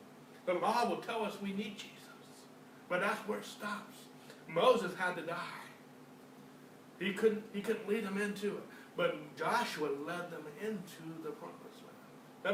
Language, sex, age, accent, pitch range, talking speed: English, male, 60-79, American, 170-220 Hz, 165 wpm